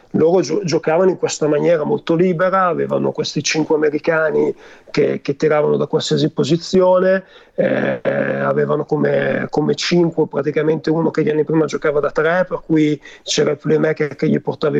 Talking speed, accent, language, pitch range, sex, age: 160 wpm, native, Italian, 155-180 Hz, male, 40-59